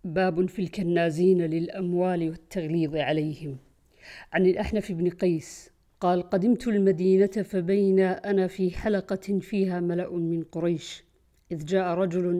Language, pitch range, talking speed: Arabic, 180-210 Hz, 115 wpm